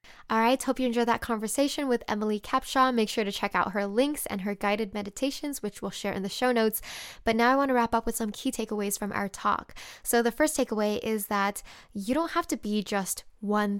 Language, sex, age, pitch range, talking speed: English, female, 10-29, 210-245 Hz, 240 wpm